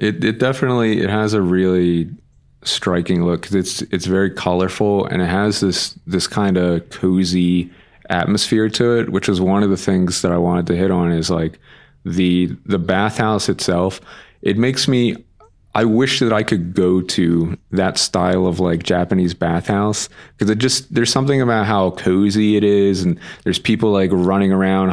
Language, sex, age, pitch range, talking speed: English, male, 30-49, 90-100 Hz, 180 wpm